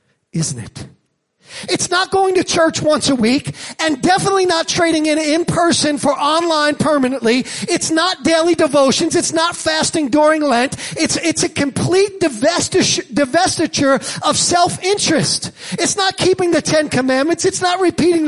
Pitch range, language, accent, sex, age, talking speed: 295-395 Hz, English, American, male, 40-59, 150 wpm